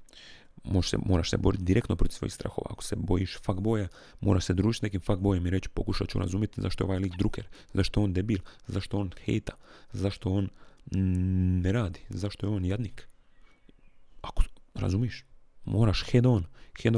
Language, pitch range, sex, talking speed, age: Croatian, 90-105 Hz, male, 170 wpm, 30-49